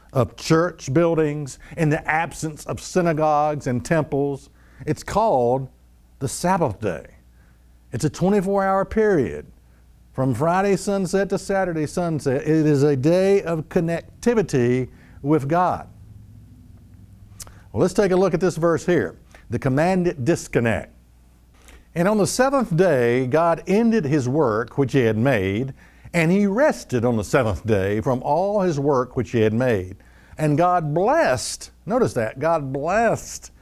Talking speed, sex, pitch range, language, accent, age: 145 wpm, male, 100-170 Hz, English, American, 60-79